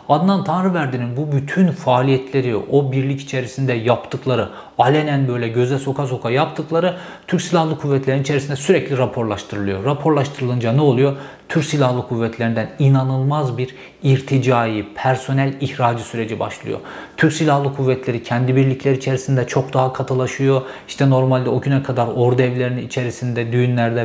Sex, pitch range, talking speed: male, 125-145 Hz, 130 wpm